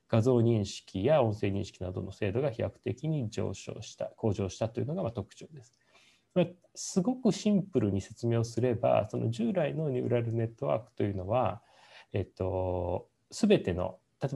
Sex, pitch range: male, 105-140 Hz